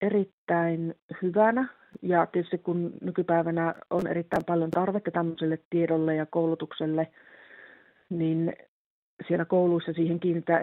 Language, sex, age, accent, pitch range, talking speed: Finnish, female, 40-59, native, 160-180 Hz, 105 wpm